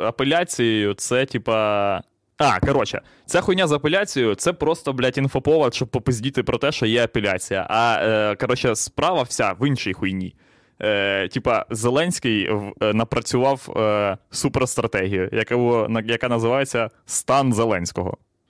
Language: Ukrainian